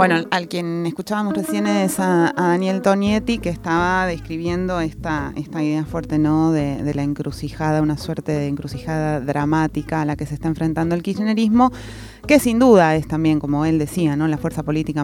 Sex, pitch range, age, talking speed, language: female, 155-205 Hz, 30-49, 185 wpm, Spanish